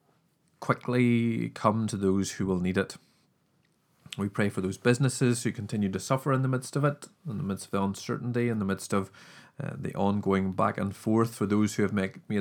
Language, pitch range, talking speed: English, 95-130 Hz, 210 wpm